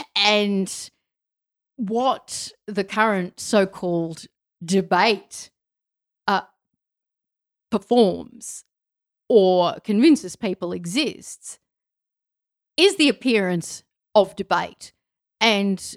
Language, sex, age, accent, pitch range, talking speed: English, female, 40-59, Australian, 170-210 Hz, 70 wpm